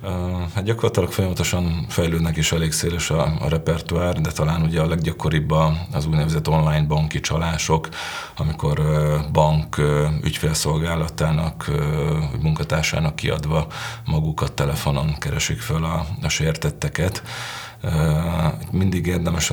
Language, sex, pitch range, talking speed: Hungarian, male, 75-85 Hz, 105 wpm